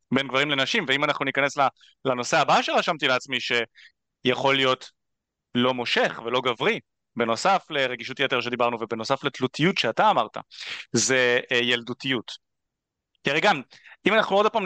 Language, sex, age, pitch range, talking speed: Hebrew, male, 30-49, 125-155 Hz, 125 wpm